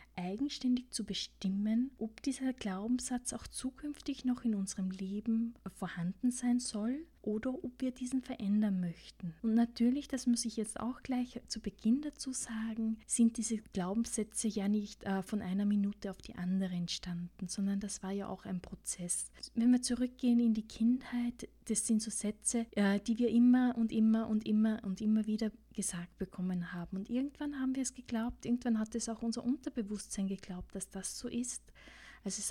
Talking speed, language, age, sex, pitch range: 175 wpm, German, 20-39, female, 195-240 Hz